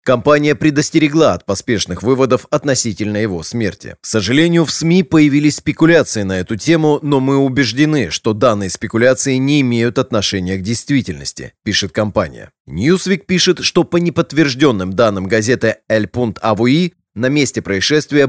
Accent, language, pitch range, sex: native, Russian, 110-140 Hz, male